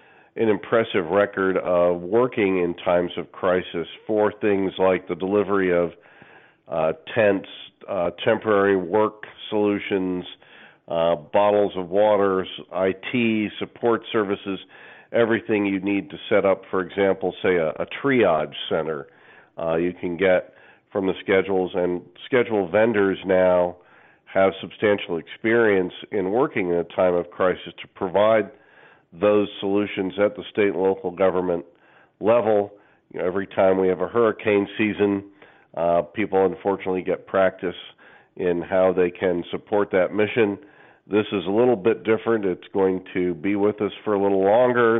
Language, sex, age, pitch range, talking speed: English, male, 50-69, 90-105 Hz, 145 wpm